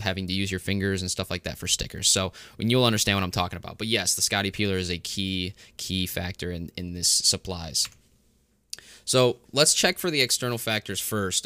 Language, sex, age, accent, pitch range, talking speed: English, male, 20-39, American, 95-120 Hz, 215 wpm